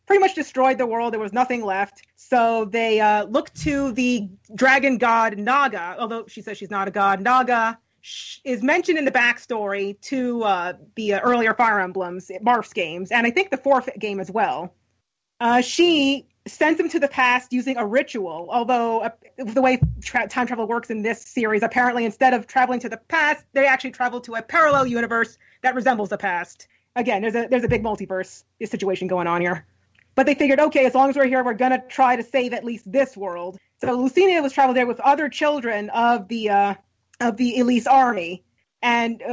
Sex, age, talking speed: female, 30-49, 200 wpm